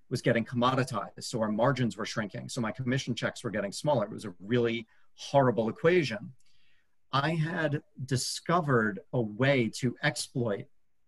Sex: male